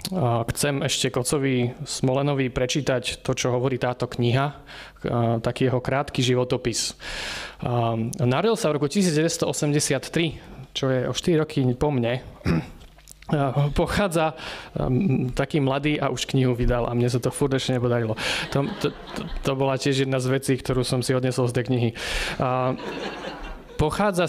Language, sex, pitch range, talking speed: Slovak, male, 130-155 Hz, 135 wpm